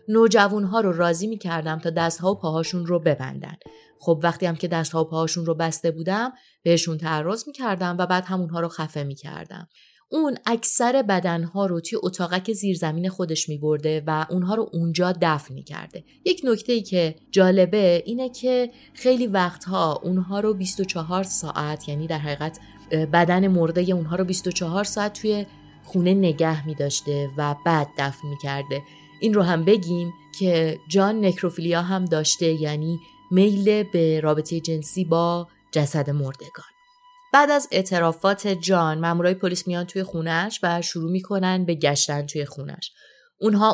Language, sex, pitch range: Persian, female, 160-195 Hz